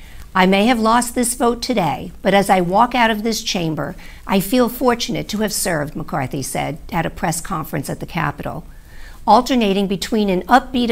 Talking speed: 185 wpm